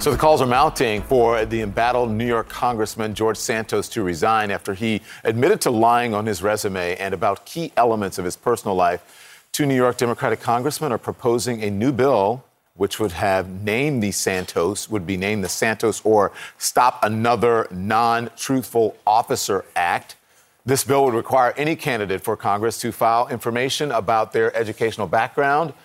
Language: English